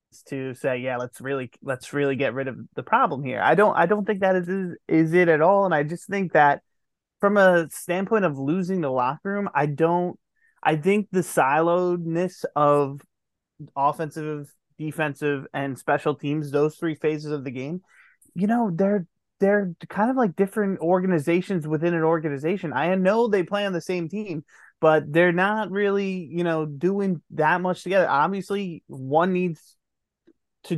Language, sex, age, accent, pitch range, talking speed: English, male, 20-39, American, 140-185 Hz, 170 wpm